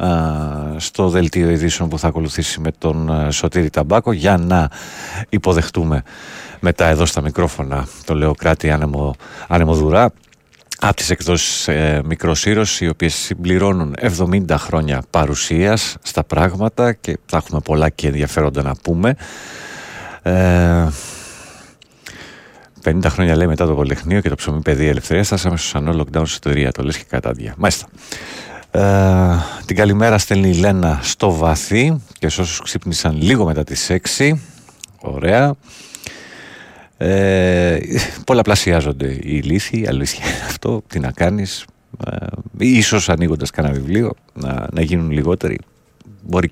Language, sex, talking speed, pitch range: Greek, male, 135 wpm, 75-100 Hz